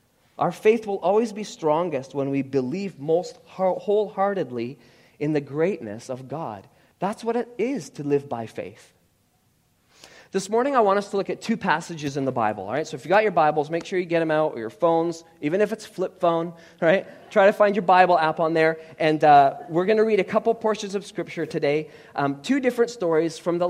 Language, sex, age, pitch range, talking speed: English, male, 30-49, 130-170 Hz, 220 wpm